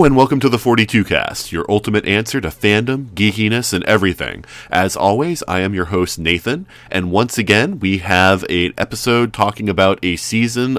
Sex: male